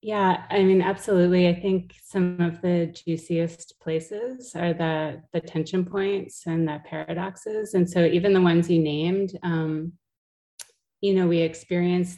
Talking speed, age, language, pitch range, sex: 155 wpm, 30-49, English, 165-195 Hz, female